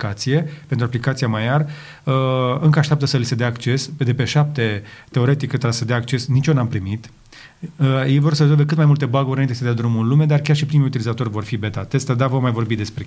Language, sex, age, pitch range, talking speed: Romanian, male, 30-49, 120-150 Hz, 245 wpm